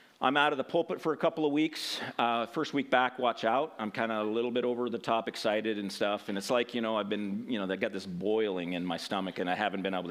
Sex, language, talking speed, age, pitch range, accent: male, English, 290 wpm, 40-59, 115-165 Hz, American